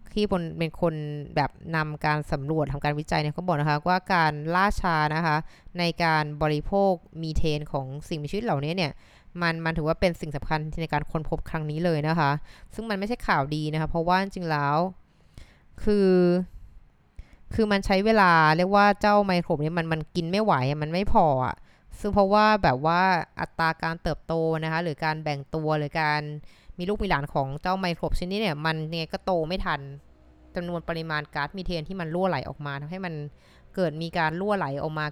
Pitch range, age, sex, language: 150-180 Hz, 20-39, female, Thai